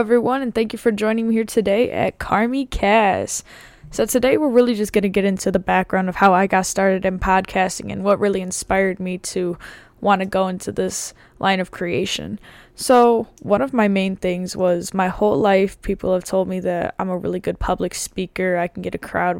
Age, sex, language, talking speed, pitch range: 10-29, female, English, 215 wpm, 180-200 Hz